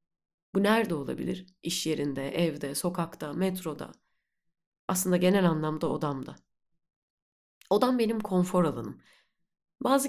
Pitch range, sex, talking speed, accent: 155-205 Hz, female, 100 wpm, native